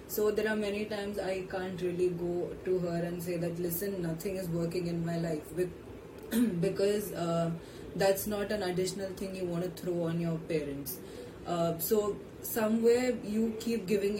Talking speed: 175 wpm